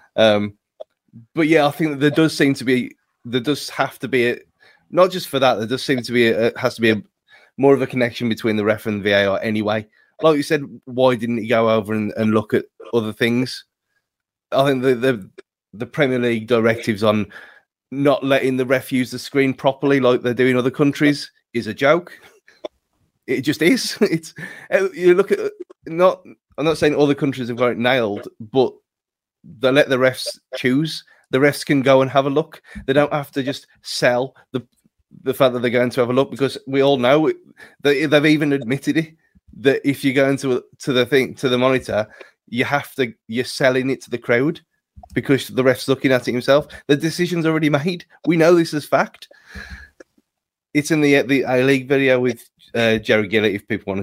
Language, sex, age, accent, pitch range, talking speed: English, male, 20-39, British, 120-145 Hz, 210 wpm